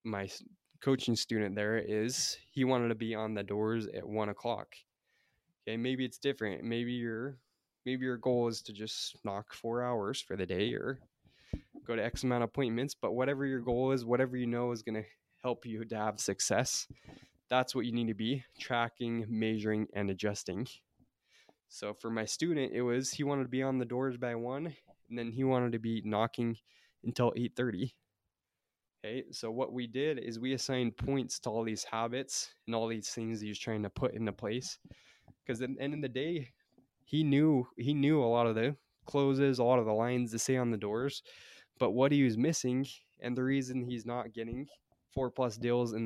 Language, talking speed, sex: English, 200 wpm, male